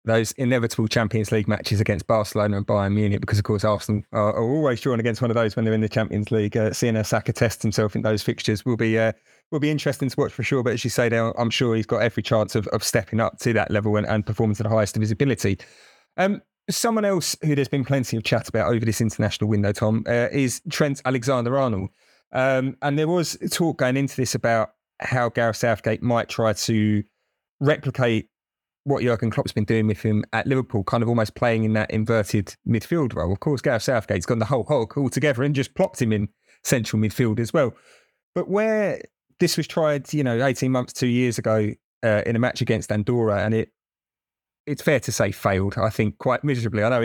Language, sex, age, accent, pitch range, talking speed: English, male, 30-49, British, 110-130 Hz, 220 wpm